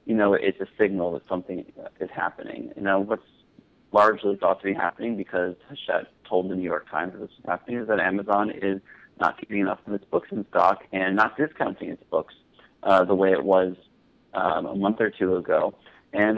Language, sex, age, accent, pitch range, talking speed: English, male, 30-49, American, 95-100 Hz, 205 wpm